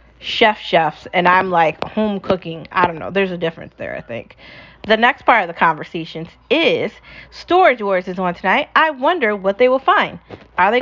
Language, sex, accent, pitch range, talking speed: English, female, American, 190-250 Hz, 200 wpm